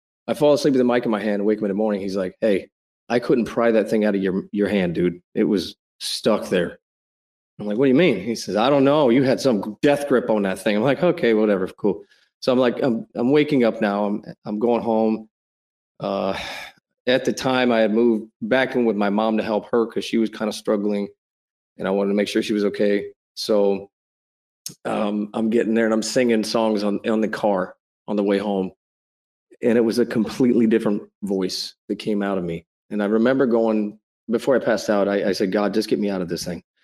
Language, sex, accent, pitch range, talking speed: English, male, American, 100-115 Hz, 240 wpm